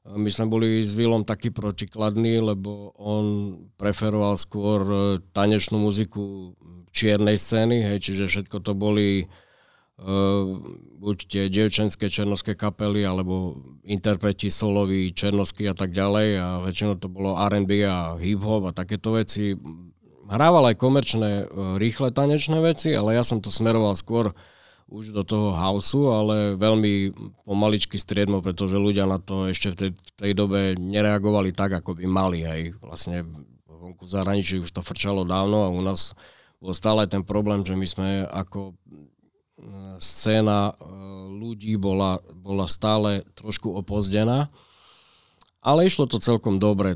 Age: 40-59